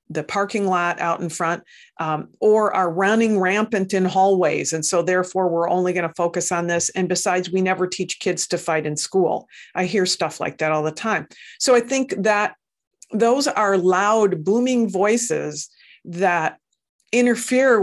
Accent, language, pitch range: American, English, 180-215 Hz